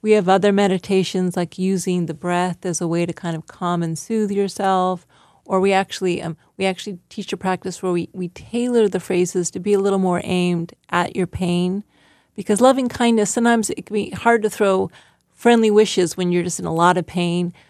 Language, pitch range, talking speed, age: English, 175-215 Hz, 210 wpm, 30-49